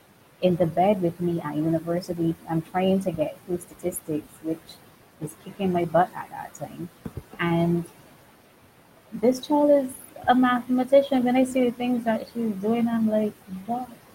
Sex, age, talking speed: female, 30-49, 160 wpm